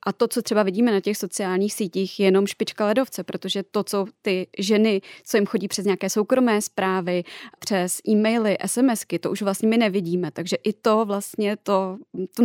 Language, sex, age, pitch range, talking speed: Czech, female, 20-39, 190-210 Hz, 190 wpm